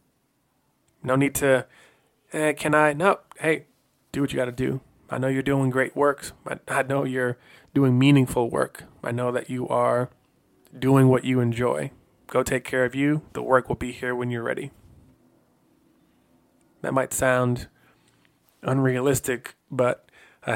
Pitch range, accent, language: 125-140 Hz, American, English